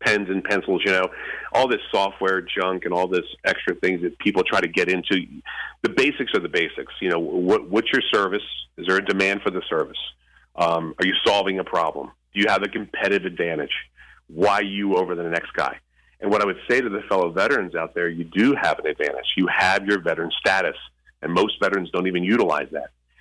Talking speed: 215 wpm